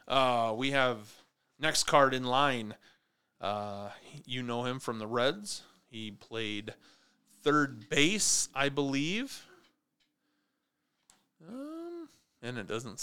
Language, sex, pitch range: English, male, 110-140 Hz